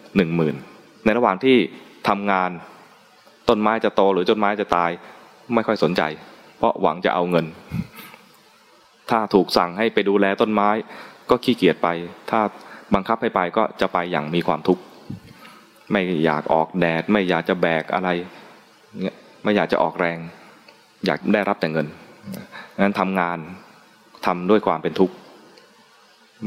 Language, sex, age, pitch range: English, male, 20-39, 85-105 Hz